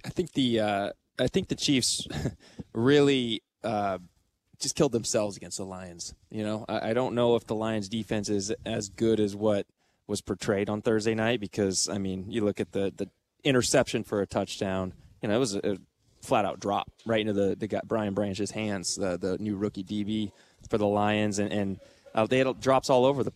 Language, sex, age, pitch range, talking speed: English, male, 20-39, 100-115 Hz, 210 wpm